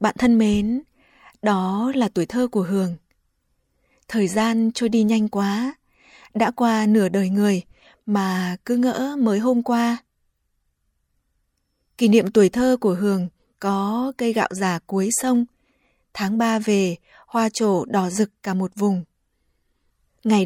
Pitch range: 185-235 Hz